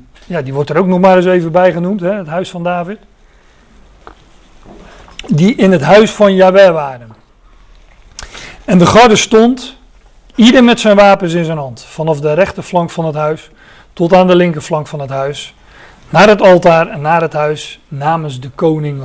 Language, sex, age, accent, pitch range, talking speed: Dutch, male, 40-59, Dutch, 155-200 Hz, 175 wpm